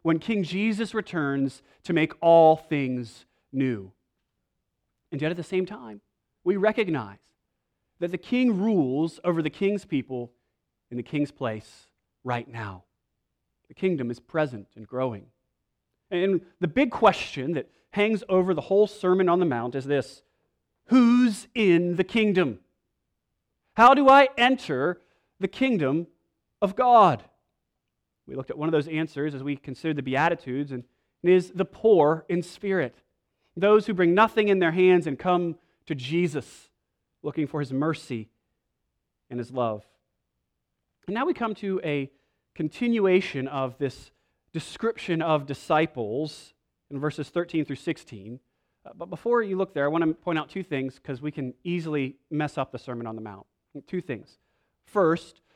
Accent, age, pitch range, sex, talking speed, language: American, 30-49, 130-185 Hz, male, 155 wpm, English